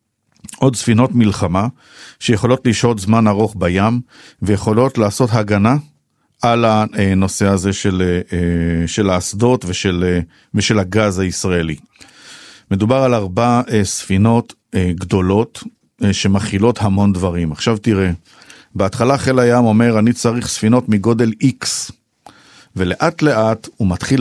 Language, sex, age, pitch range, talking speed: Hebrew, male, 50-69, 95-120 Hz, 110 wpm